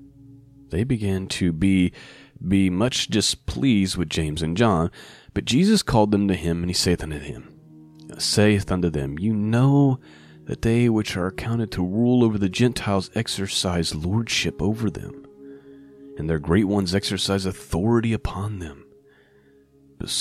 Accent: American